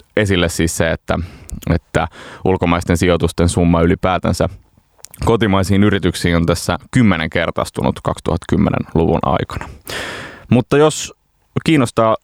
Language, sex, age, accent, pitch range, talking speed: Finnish, male, 20-39, native, 85-100 Hz, 100 wpm